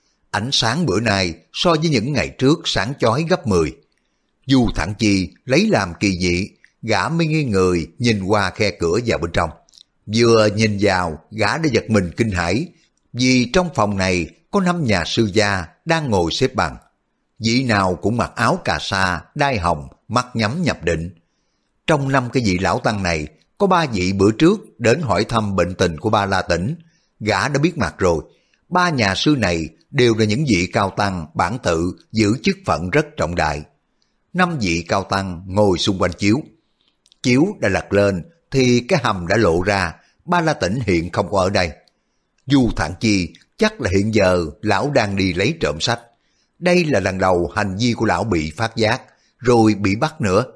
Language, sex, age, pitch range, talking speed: Vietnamese, male, 60-79, 90-130 Hz, 195 wpm